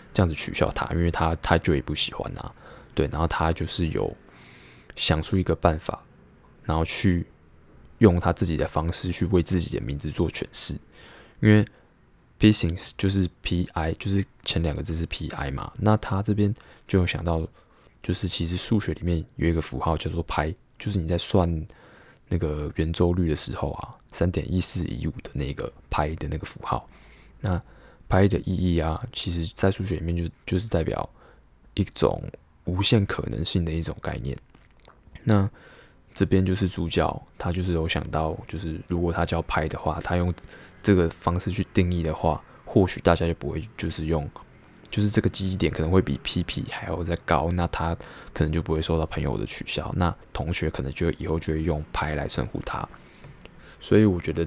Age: 20-39